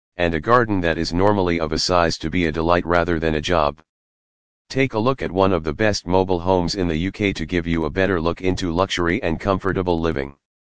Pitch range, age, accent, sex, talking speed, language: 80-95 Hz, 40-59, American, male, 230 wpm, English